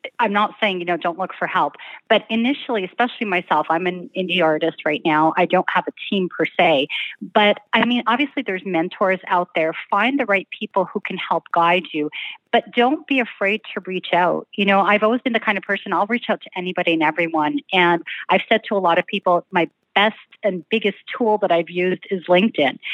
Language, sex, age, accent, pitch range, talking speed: English, female, 30-49, American, 180-225 Hz, 220 wpm